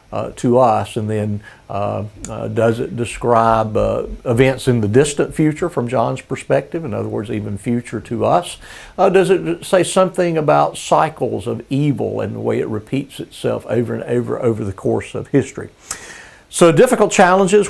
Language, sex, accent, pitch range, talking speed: English, male, American, 110-145 Hz, 175 wpm